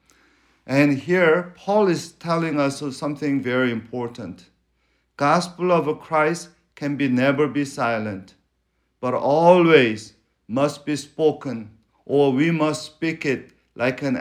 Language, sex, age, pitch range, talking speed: English, male, 50-69, 125-160 Hz, 125 wpm